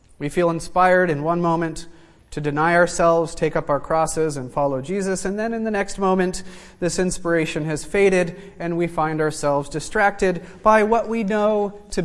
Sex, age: male, 30-49